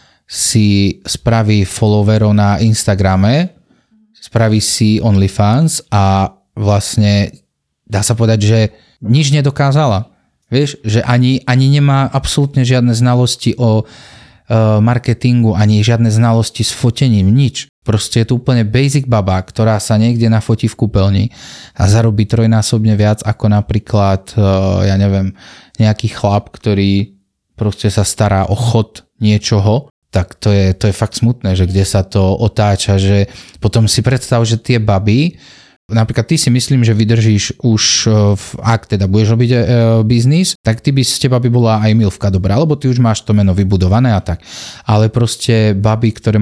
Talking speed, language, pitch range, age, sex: 150 wpm, Czech, 100-120 Hz, 30-49, male